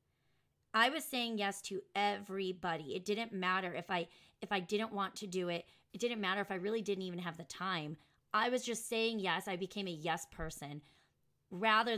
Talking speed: 200 wpm